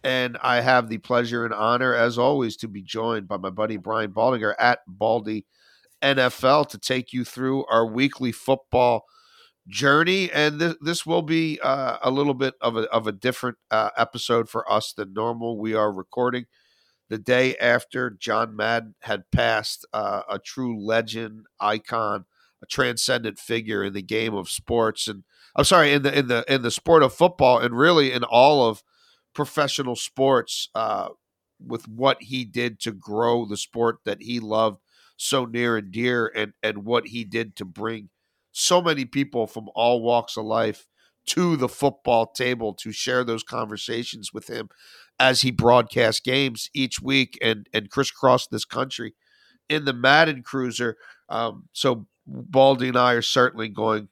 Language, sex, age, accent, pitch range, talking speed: English, male, 50-69, American, 110-130 Hz, 170 wpm